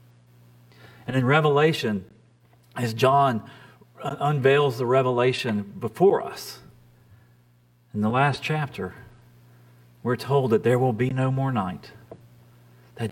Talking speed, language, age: 110 wpm, English, 40-59